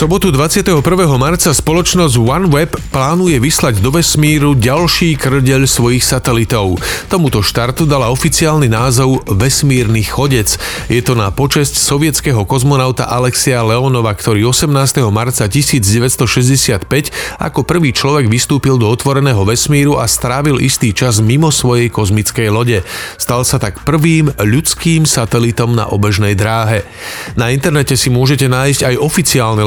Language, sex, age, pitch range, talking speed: Slovak, male, 40-59, 115-140 Hz, 130 wpm